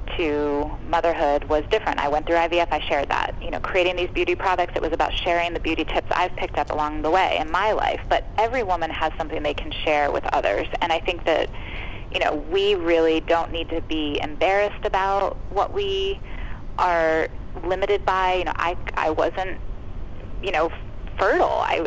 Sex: female